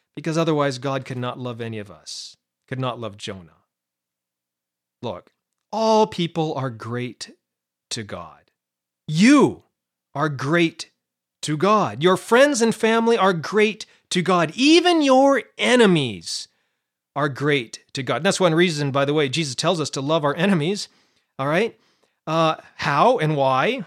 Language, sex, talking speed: English, male, 150 wpm